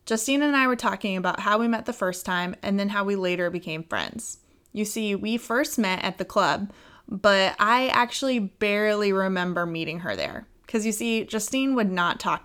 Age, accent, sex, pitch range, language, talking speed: 20-39, American, female, 185-240 Hz, English, 200 wpm